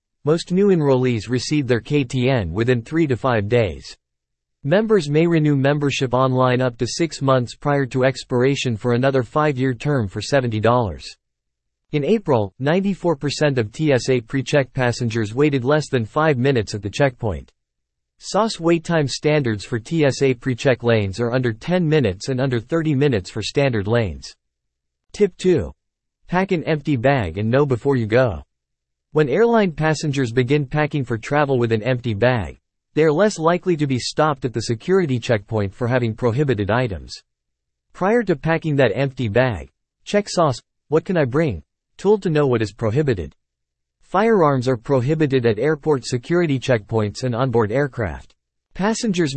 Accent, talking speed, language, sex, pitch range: American, 155 wpm, English, male, 115-150 Hz